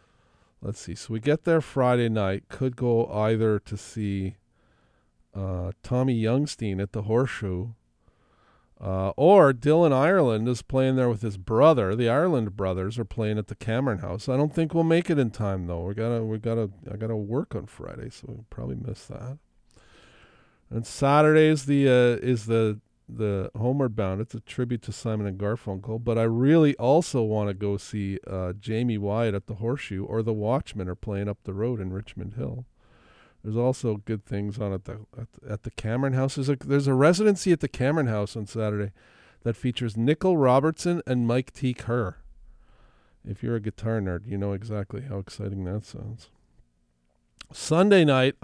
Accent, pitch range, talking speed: American, 100-130 Hz, 180 wpm